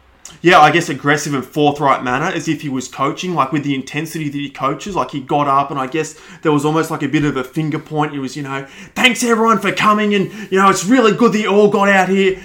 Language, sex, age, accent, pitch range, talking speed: English, male, 20-39, Australian, 130-165 Hz, 270 wpm